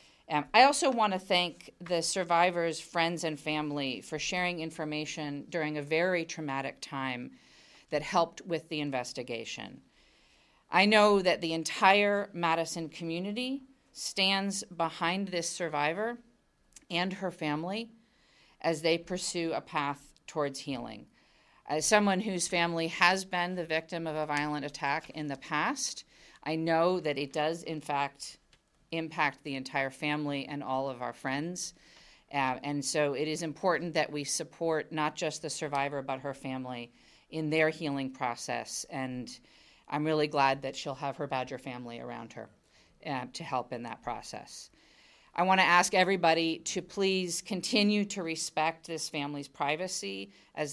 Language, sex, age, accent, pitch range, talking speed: English, female, 40-59, American, 145-175 Hz, 150 wpm